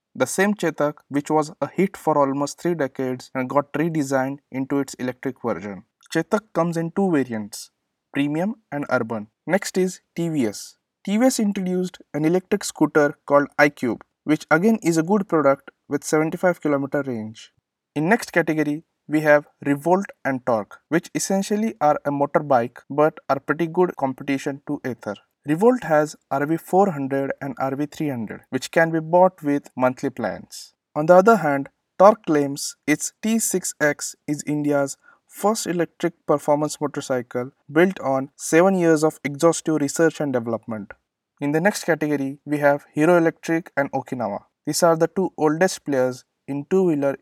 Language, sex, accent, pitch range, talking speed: English, male, Indian, 140-170 Hz, 150 wpm